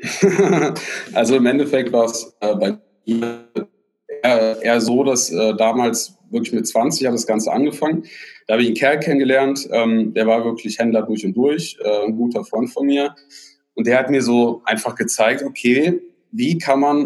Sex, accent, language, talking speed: male, German, Danish, 185 wpm